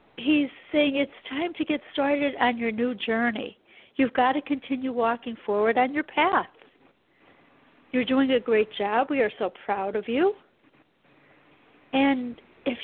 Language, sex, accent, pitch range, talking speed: English, female, American, 240-300 Hz, 155 wpm